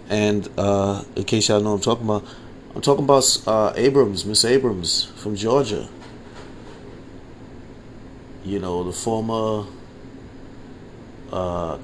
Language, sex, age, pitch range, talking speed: English, male, 30-49, 100-125 Hz, 120 wpm